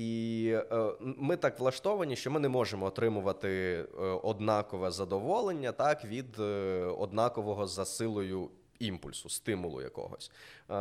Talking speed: 105 wpm